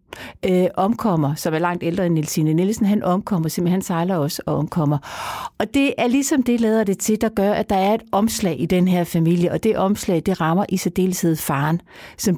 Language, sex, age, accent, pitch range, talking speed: Danish, female, 60-79, native, 180-235 Hz, 215 wpm